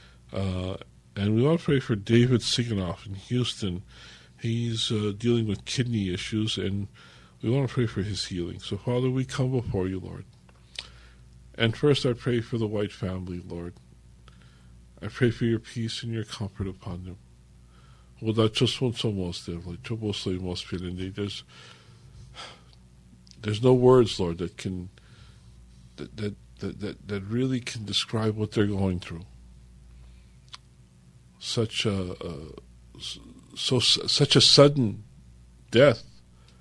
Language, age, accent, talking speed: English, 50-69, American, 135 wpm